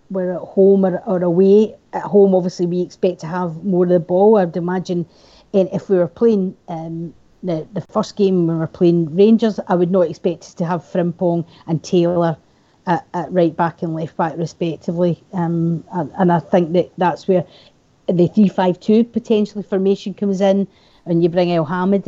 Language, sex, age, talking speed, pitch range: English, female, 40-59, 200 wpm, 175-210 Hz